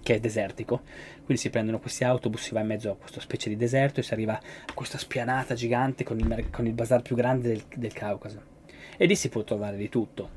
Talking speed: 235 wpm